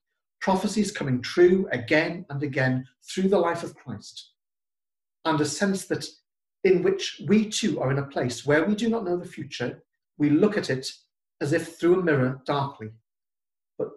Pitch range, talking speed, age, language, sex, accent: 130-180 Hz, 175 wpm, 40-59, English, male, British